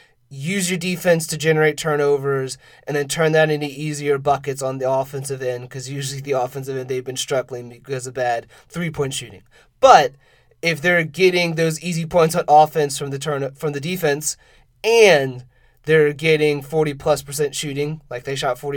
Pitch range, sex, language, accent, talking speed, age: 140-165 Hz, male, English, American, 175 wpm, 30-49